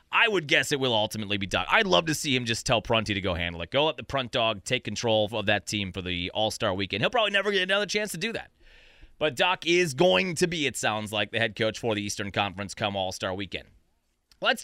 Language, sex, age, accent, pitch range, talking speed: English, male, 30-49, American, 115-170 Hz, 260 wpm